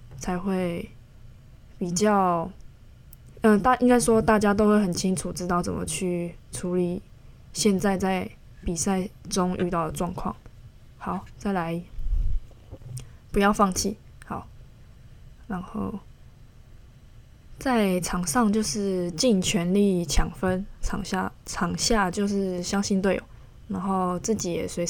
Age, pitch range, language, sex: 20-39, 165-205 Hz, Chinese, female